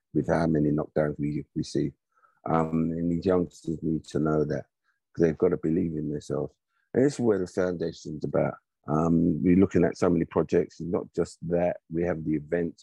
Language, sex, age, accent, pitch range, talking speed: English, male, 50-69, British, 75-90 Hz, 200 wpm